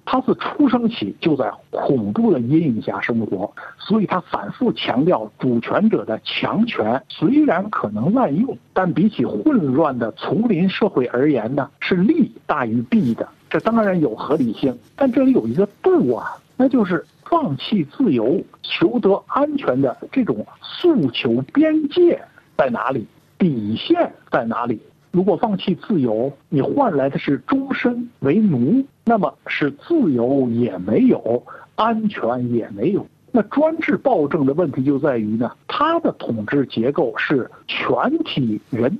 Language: Chinese